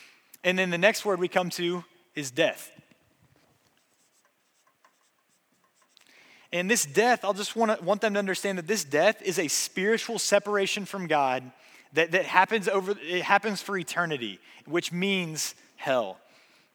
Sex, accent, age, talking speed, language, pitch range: male, American, 20-39, 145 wpm, English, 165-205 Hz